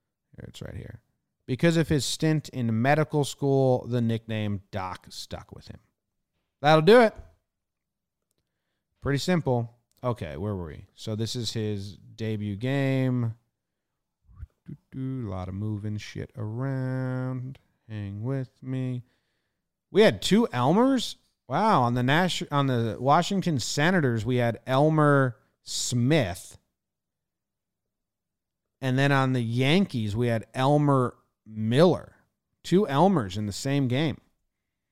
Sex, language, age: male, English, 30-49